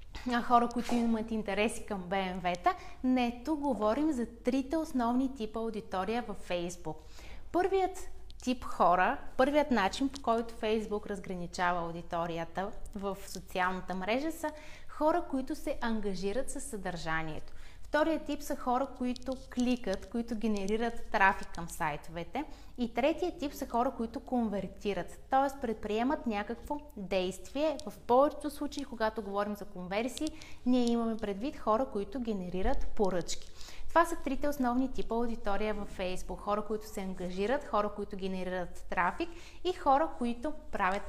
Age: 20-39